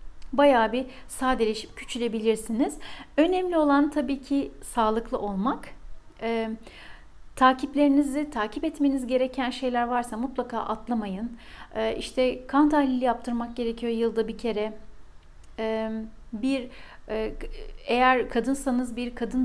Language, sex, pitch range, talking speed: Turkish, female, 225-285 Hz, 110 wpm